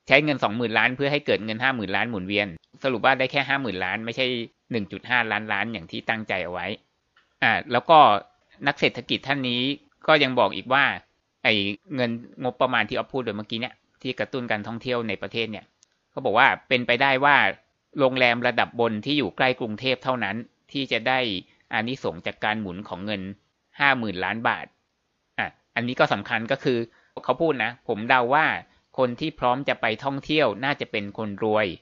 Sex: male